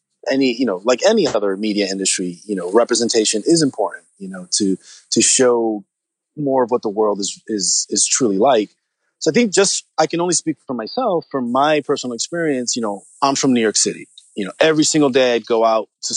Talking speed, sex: 215 wpm, male